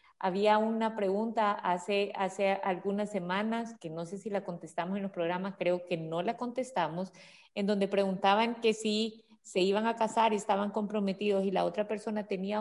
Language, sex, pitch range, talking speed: Spanish, female, 170-210 Hz, 180 wpm